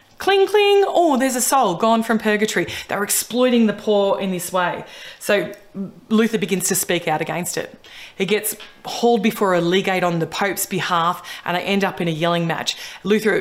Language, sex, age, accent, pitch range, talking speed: English, female, 20-39, Australian, 175-210 Hz, 190 wpm